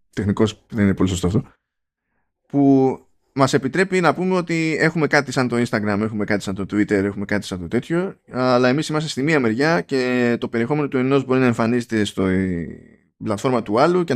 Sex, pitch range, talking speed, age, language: male, 105-140 Hz, 195 wpm, 20-39, Greek